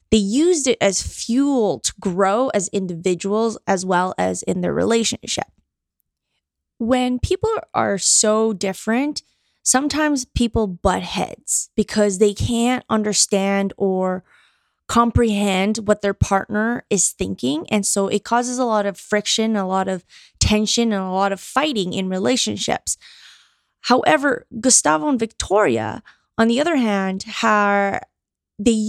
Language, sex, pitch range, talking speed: English, female, 195-235 Hz, 130 wpm